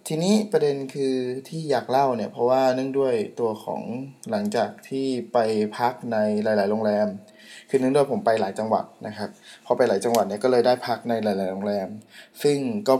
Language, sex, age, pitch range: Thai, male, 20-39, 110-140 Hz